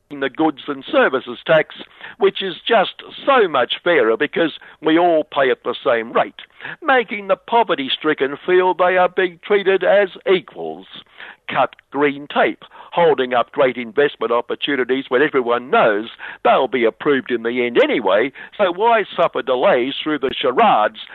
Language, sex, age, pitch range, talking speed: English, male, 60-79, 130-190 Hz, 155 wpm